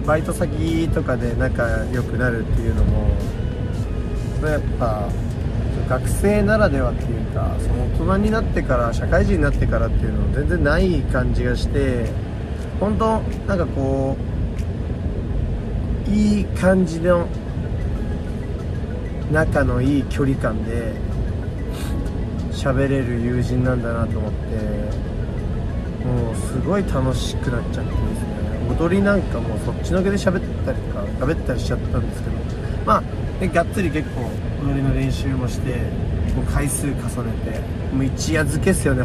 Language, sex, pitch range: Japanese, male, 95-125 Hz